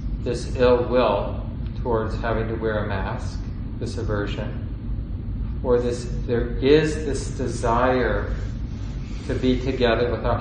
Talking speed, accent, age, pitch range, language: 120 wpm, American, 40-59, 110-125 Hz, English